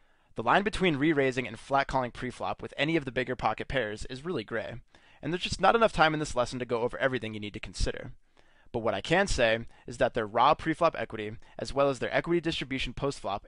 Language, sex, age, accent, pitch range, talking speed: English, male, 20-39, American, 115-145 Hz, 235 wpm